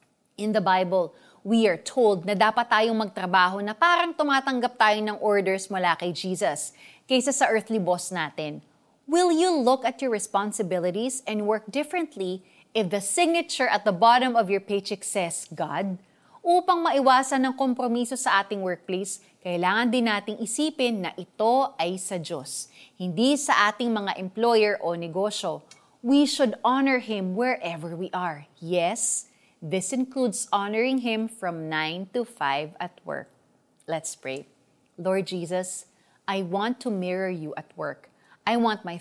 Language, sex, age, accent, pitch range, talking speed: Filipino, female, 30-49, native, 180-240 Hz, 150 wpm